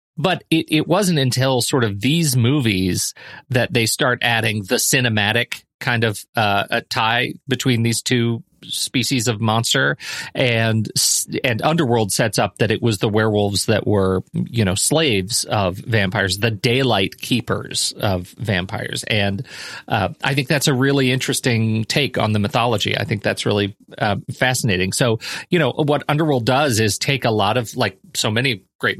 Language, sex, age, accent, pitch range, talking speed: English, male, 40-59, American, 105-130 Hz, 170 wpm